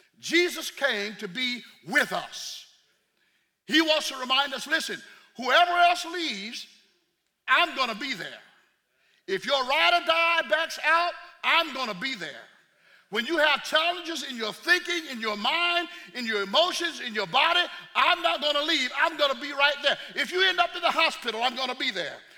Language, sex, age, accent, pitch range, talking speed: English, male, 50-69, American, 270-355 Hz, 190 wpm